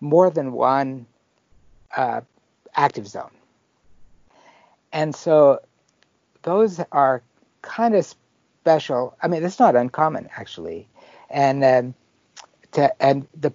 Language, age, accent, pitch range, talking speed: English, 60-79, American, 115-150 Hz, 95 wpm